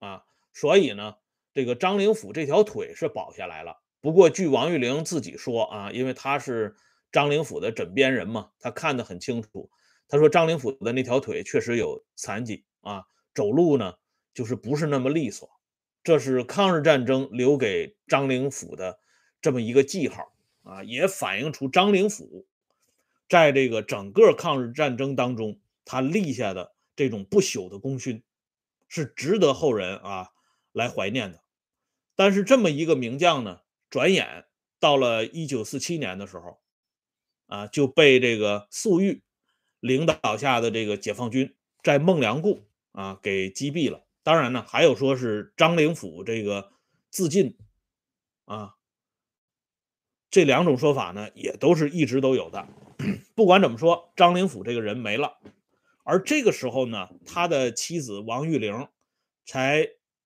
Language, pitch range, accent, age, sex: Swedish, 110-165 Hz, Chinese, 30-49, male